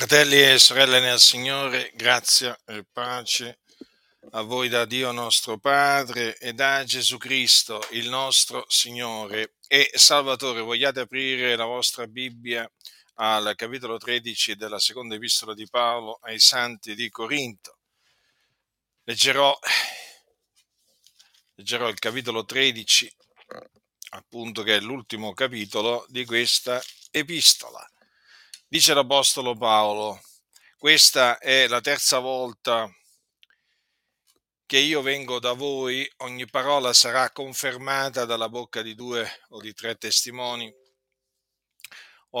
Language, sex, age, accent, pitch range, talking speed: Italian, male, 50-69, native, 115-130 Hz, 110 wpm